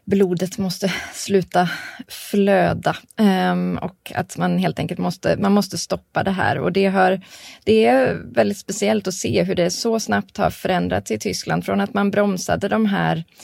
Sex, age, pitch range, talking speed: female, 20-39, 170-205 Hz, 175 wpm